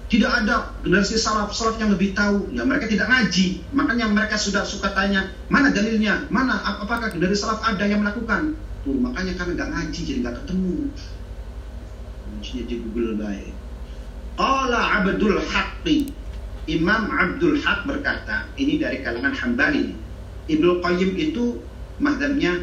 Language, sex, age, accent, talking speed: Indonesian, male, 40-59, native, 140 wpm